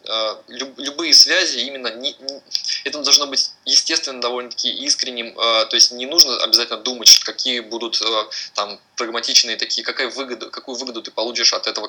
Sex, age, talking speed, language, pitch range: male, 20-39, 160 wpm, Russian, 110-130 Hz